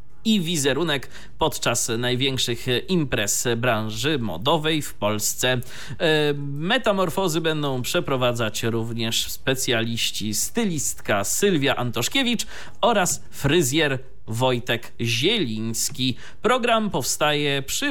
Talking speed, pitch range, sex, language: 80 wpm, 115-175 Hz, male, Polish